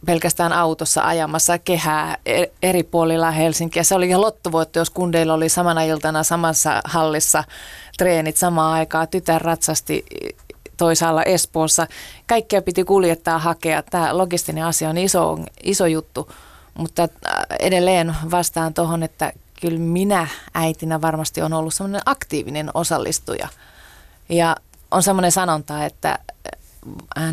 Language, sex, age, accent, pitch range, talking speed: Finnish, female, 30-49, native, 155-175 Hz, 125 wpm